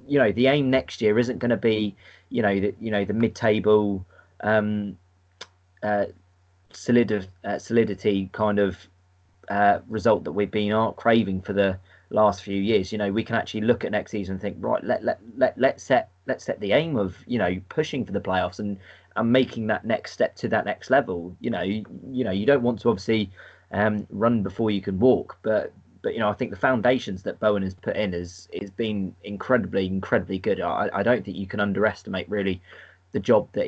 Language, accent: English, British